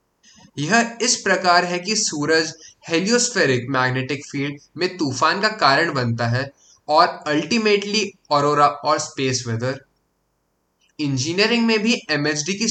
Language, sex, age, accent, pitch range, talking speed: Hindi, male, 20-39, native, 135-190 Hz, 120 wpm